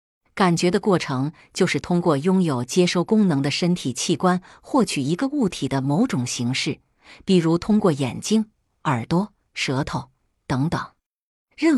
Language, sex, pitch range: Chinese, female, 135-195 Hz